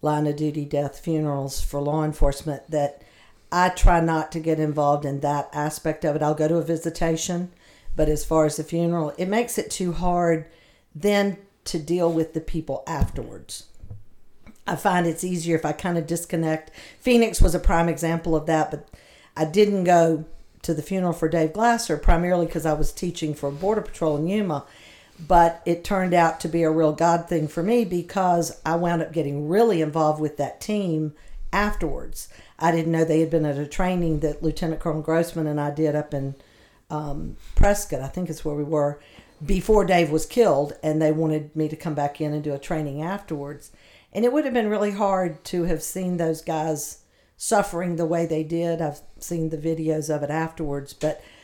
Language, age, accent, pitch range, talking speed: English, 50-69, American, 150-175 Hz, 200 wpm